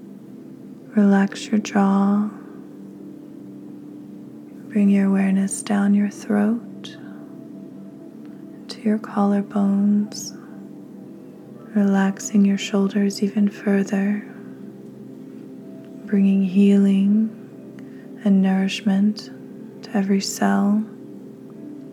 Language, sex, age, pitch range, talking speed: English, female, 20-39, 195-215 Hz, 65 wpm